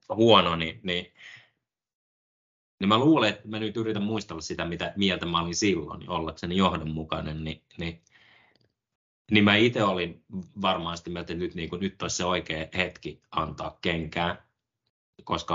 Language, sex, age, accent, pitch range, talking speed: Finnish, male, 20-39, native, 85-110 Hz, 155 wpm